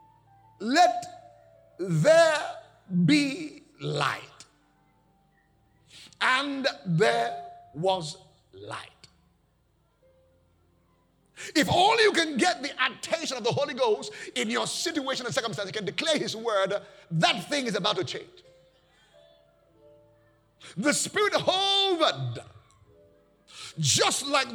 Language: English